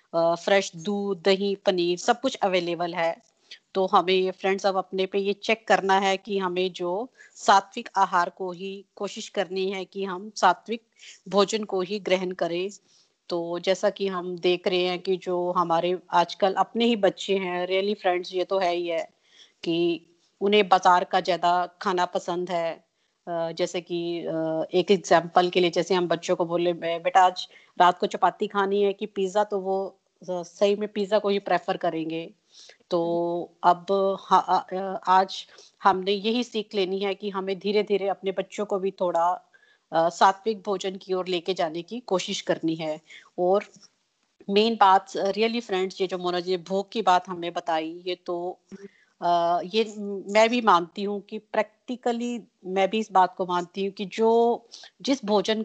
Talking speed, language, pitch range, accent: 130 wpm, Hindi, 180-200 Hz, native